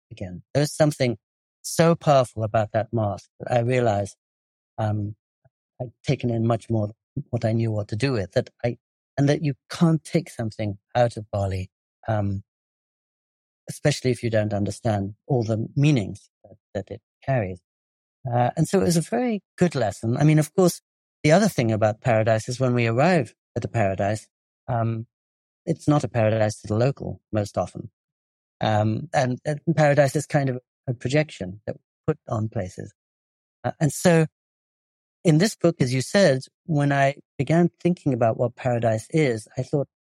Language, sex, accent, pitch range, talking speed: English, male, British, 110-145 Hz, 175 wpm